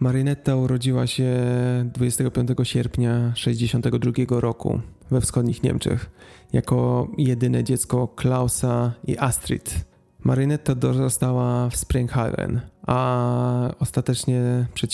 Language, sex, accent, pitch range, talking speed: Polish, male, native, 120-130 Hz, 90 wpm